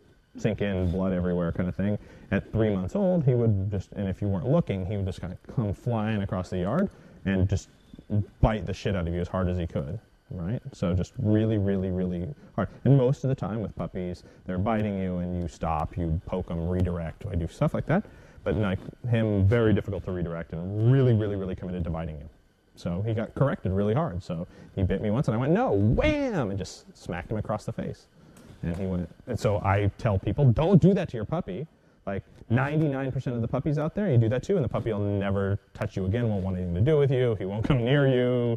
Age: 30-49